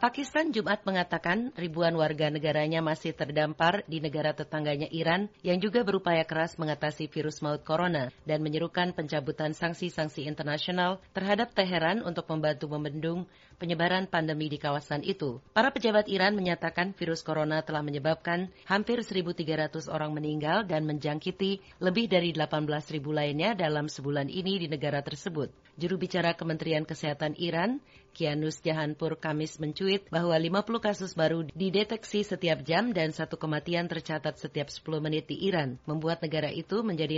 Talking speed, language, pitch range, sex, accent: 140 wpm, Indonesian, 155-180 Hz, female, native